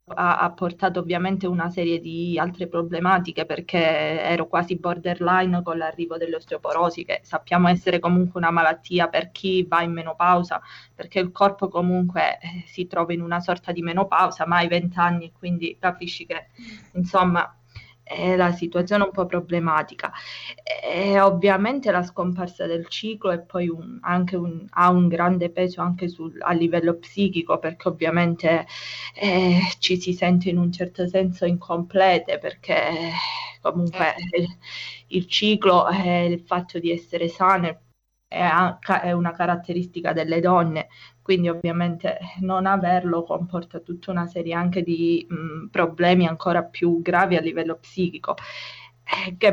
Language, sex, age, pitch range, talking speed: Italian, female, 20-39, 170-185 Hz, 140 wpm